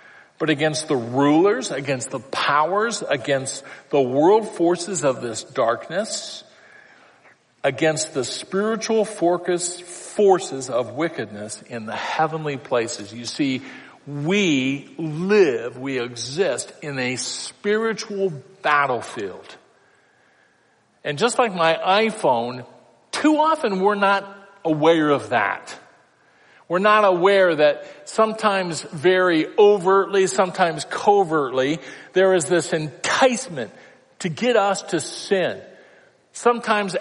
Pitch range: 145-205 Hz